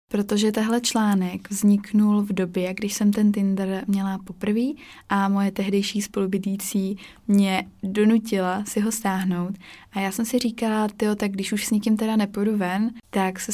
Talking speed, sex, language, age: 165 wpm, female, Czech, 20-39